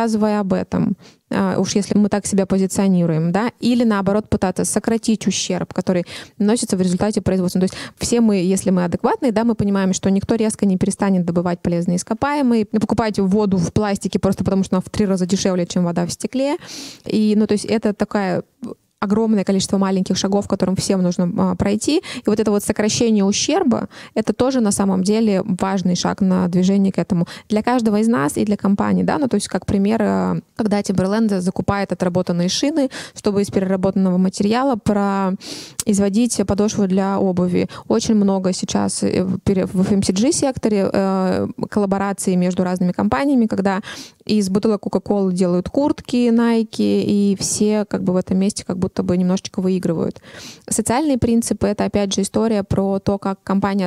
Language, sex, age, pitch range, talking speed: Russian, female, 20-39, 185-215 Hz, 170 wpm